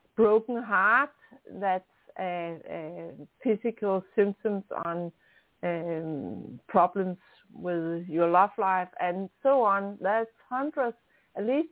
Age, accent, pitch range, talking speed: 60-79, Danish, 185-235 Hz, 110 wpm